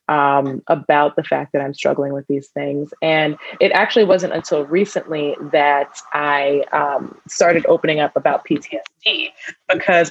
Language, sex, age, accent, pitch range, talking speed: English, female, 20-39, American, 145-175 Hz, 150 wpm